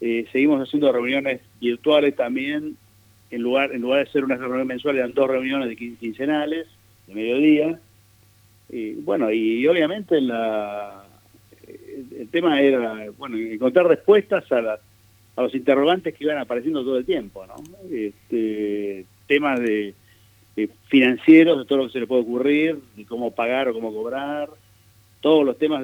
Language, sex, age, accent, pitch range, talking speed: Spanish, male, 40-59, Argentinian, 105-150 Hz, 155 wpm